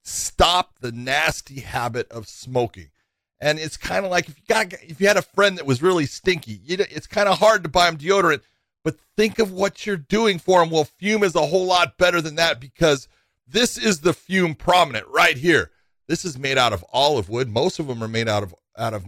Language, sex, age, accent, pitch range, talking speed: English, male, 40-59, American, 130-180 Hz, 235 wpm